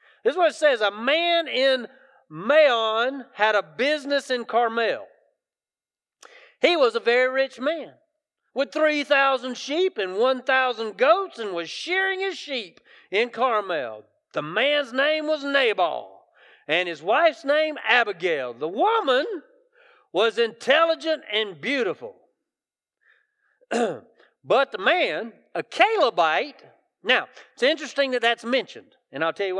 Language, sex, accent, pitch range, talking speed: English, male, American, 235-360 Hz, 130 wpm